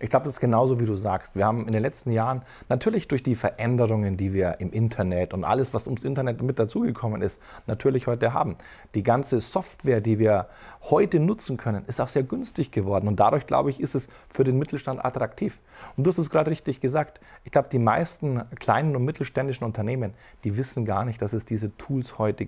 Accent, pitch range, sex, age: German, 110-140 Hz, male, 40-59